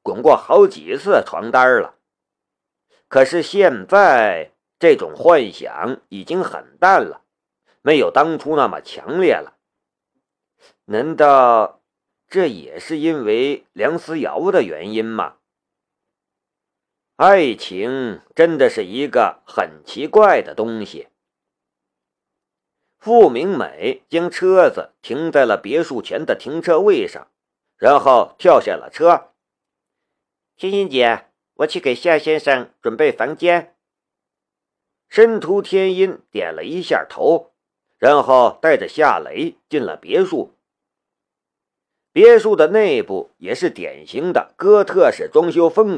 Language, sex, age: Chinese, male, 50-69